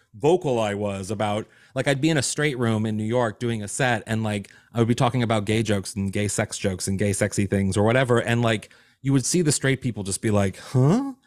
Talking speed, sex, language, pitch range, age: 255 wpm, male, English, 115-175 Hz, 30-49